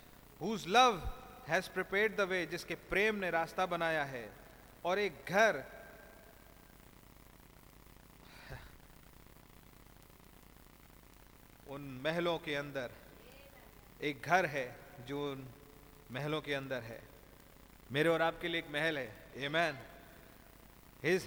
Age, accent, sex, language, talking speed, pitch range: 40-59, native, male, Hindi, 105 wpm, 140-175 Hz